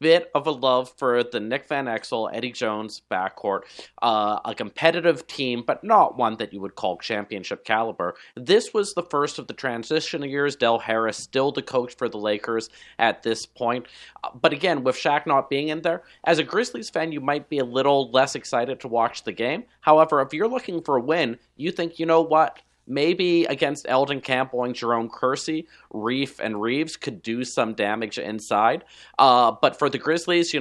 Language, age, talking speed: English, 30-49, 195 wpm